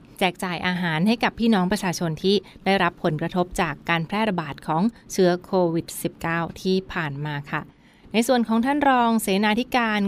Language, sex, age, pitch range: Thai, female, 20-39, 170-200 Hz